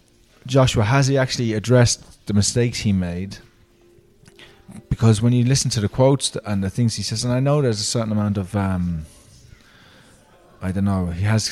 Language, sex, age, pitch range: English, male, 20-39, 100-120 Hz